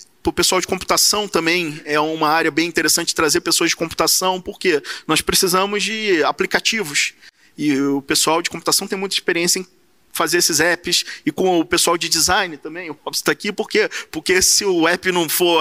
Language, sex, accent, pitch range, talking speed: Portuguese, male, Brazilian, 155-190 Hz, 190 wpm